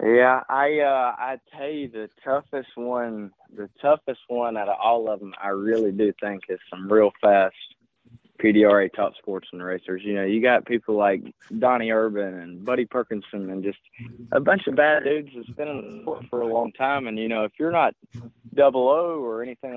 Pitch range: 115-150 Hz